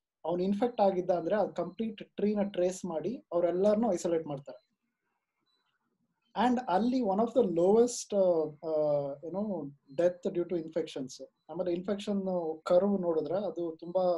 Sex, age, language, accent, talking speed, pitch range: male, 20-39, Kannada, native, 100 wpm, 160-205 Hz